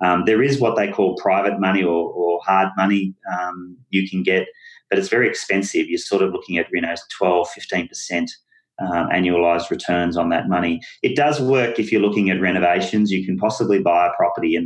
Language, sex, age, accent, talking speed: English, male, 30-49, Australian, 205 wpm